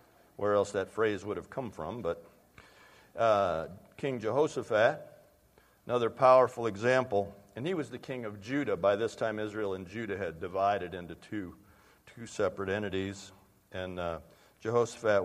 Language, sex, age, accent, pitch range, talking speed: English, male, 50-69, American, 105-150 Hz, 150 wpm